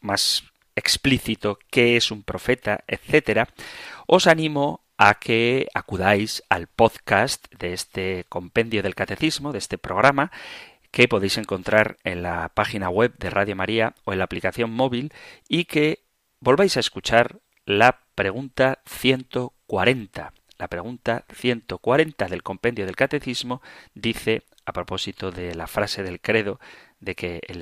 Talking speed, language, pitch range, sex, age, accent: 135 wpm, Spanish, 95-130 Hz, male, 30-49, Spanish